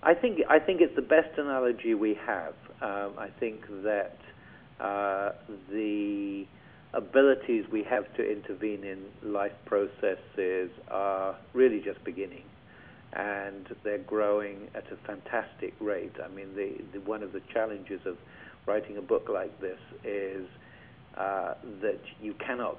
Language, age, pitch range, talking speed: English, 50-69, 100-120 Hz, 140 wpm